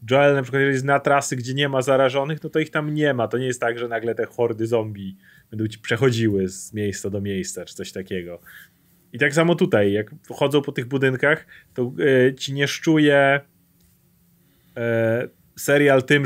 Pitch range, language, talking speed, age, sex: 110-145 Hz, Polish, 190 wpm, 30-49, male